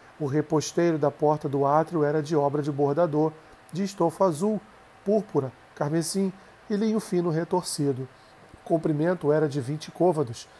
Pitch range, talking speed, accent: 145-170 Hz, 145 wpm, Brazilian